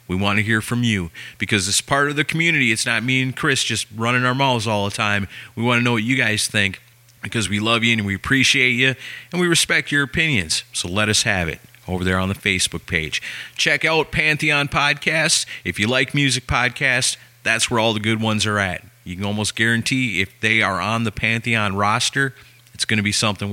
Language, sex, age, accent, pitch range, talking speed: English, male, 30-49, American, 105-140 Hz, 225 wpm